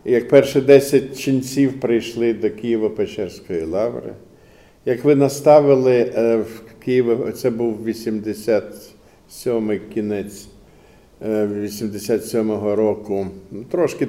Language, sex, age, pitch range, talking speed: Ukrainian, male, 50-69, 110-130 Hz, 85 wpm